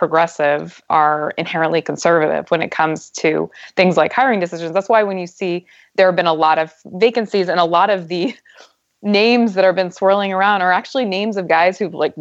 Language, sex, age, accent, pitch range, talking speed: English, female, 20-39, American, 165-200 Hz, 205 wpm